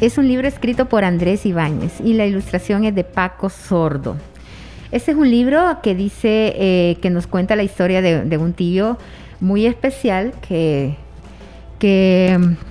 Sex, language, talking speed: female, Spanish, 160 wpm